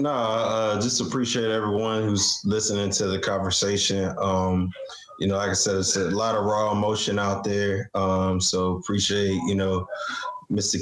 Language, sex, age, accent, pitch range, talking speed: English, male, 20-39, American, 100-115 Hz, 160 wpm